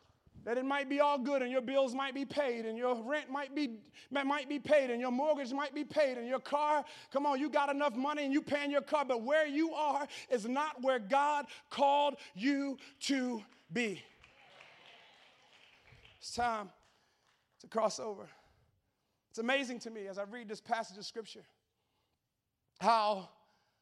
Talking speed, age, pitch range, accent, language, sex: 170 wpm, 30-49, 215-285 Hz, American, English, male